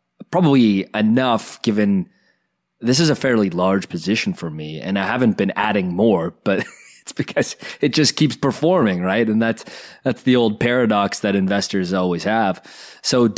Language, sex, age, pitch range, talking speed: English, male, 20-39, 100-130 Hz, 160 wpm